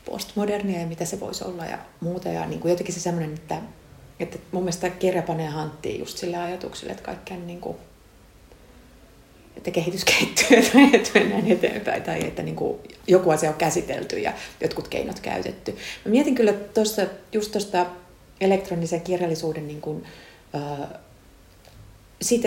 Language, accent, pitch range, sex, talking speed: Finnish, native, 155-185 Hz, female, 150 wpm